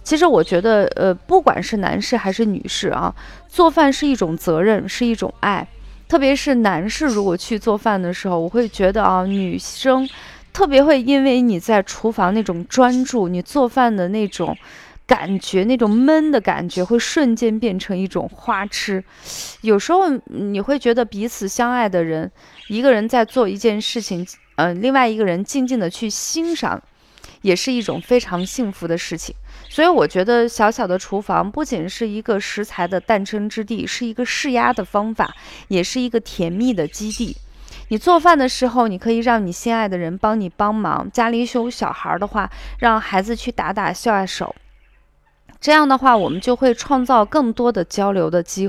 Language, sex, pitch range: Chinese, female, 190-250 Hz